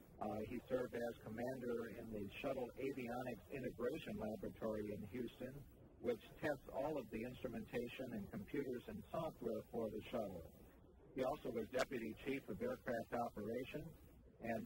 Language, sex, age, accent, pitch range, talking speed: English, male, 50-69, American, 105-125 Hz, 145 wpm